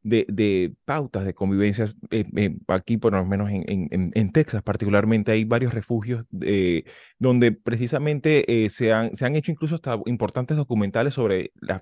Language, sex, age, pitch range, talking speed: Spanish, male, 20-39, 95-120 Hz, 170 wpm